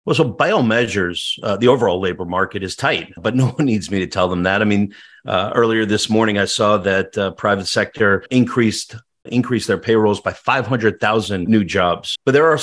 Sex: male